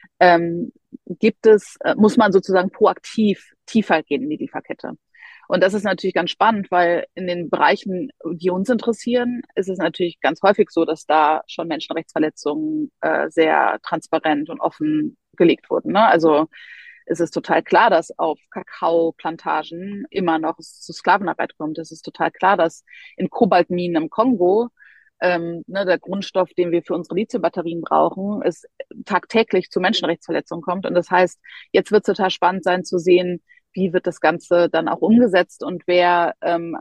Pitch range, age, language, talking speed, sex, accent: 170-210 Hz, 30-49, German, 165 wpm, female, German